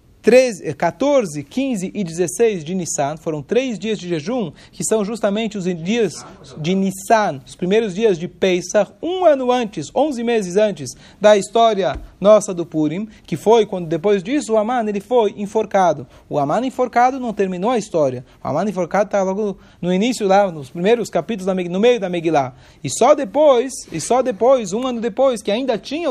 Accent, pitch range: Brazilian, 160-220 Hz